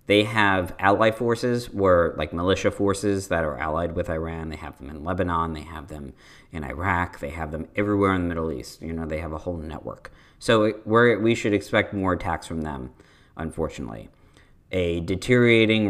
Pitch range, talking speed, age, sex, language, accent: 80-100 Hz, 180 wpm, 40-59, male, English, American